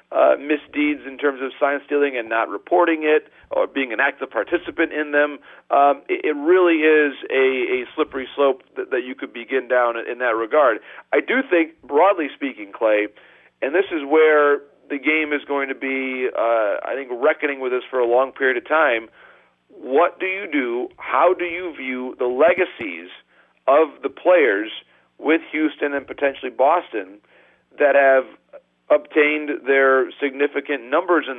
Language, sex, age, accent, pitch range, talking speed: English, male, 40-59, American, 135-165 Hz, 170 wpm